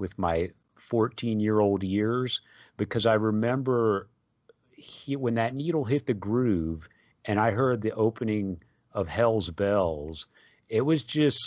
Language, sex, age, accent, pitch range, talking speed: English, male, 40-59, American, 95-120 Hz, 135 wpm